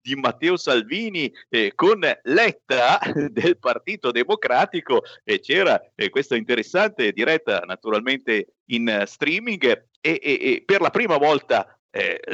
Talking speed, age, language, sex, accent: 130 wpm, 50-69, Italian, male, native